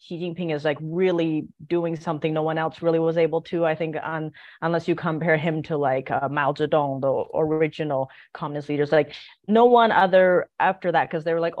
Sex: female